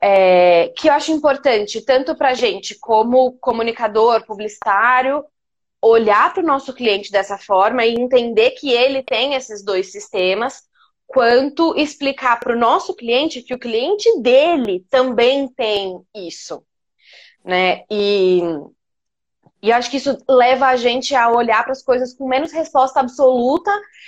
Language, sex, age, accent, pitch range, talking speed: Portuguese, female, 20-39, Brazilian, 225-275 Hz, 145 wpm